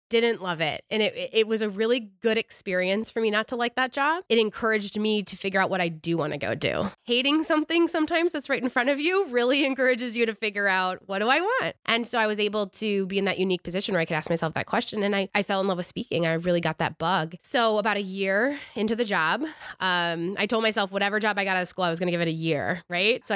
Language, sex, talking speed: English, female, 280 wpm